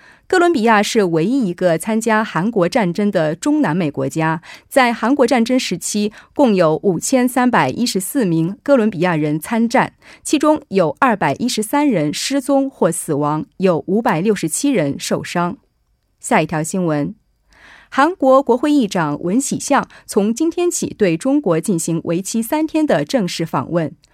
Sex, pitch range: female, 170-250 Hz